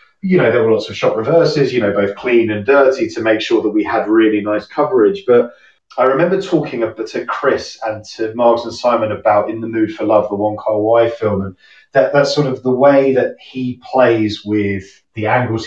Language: English